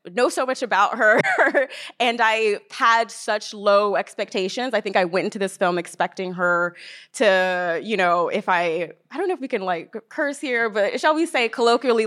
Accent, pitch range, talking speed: American, 185-245 Hz, 195 wpm